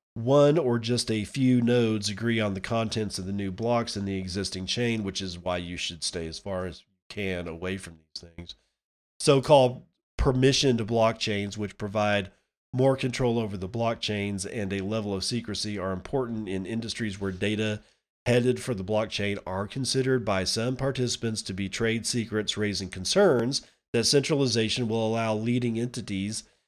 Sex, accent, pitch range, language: male, American, 100-115 Hz, English